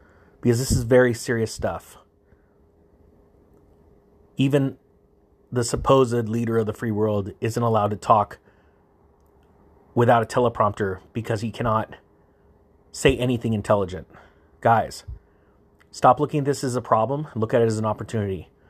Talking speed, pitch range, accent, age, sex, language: 130 wpm, 100-125 Hz, American, 30-49, male, English